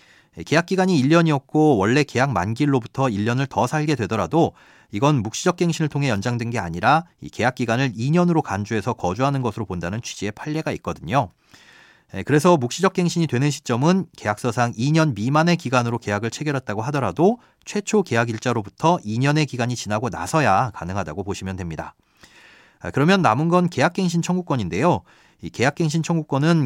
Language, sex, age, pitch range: Korean, male, 40-59, 110-160 Hz